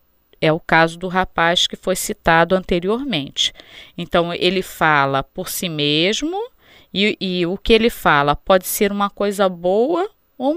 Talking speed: 155 wpm